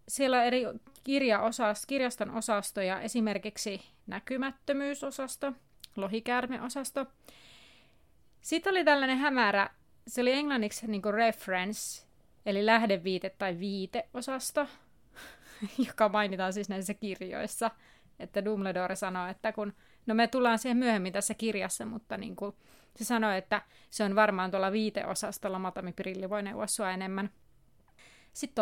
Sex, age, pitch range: female, 30-49, 200-235 Hz